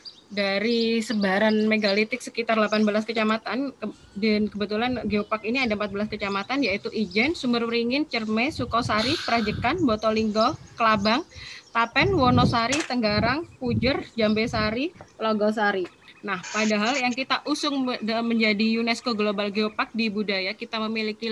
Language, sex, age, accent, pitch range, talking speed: Indonesian, female, 20-39, native, 215-250 Hz, 115 wpm